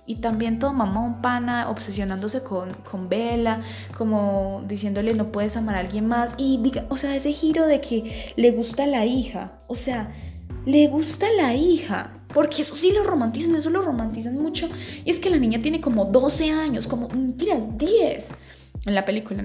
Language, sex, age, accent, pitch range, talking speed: Spanish, female, 20-39, Colombian, 185-245 Hz, 180 wpm